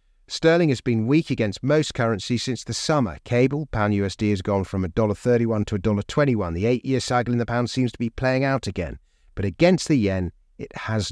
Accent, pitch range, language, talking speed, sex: British, 95-125 Hz, English, 235 wpm, male